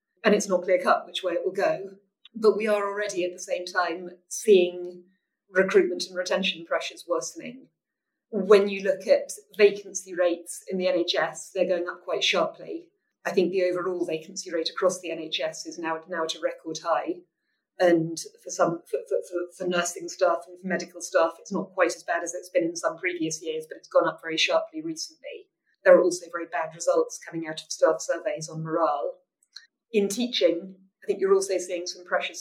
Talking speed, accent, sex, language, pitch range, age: 195 wpm, British, female, English, 175-270 Hz, 30-49